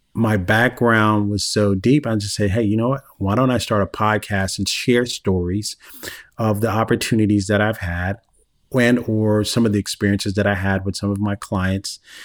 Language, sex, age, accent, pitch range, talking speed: English, male, 40-59, American, 100-110 Hz, 200 wpm